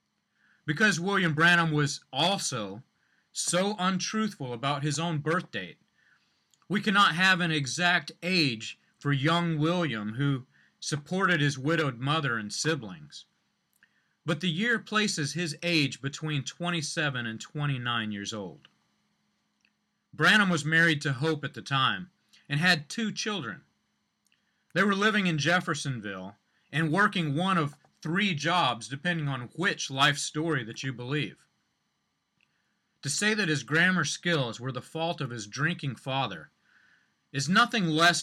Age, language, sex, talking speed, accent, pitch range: 30-49, English, male, 135 wpm, American, 135-175 Hz